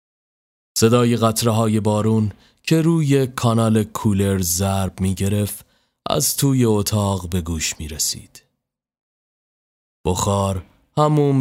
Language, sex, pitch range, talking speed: Persian, male, 90-120 Hz, 95 wpm